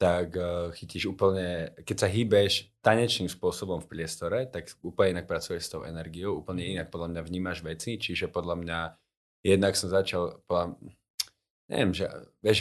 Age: 20-39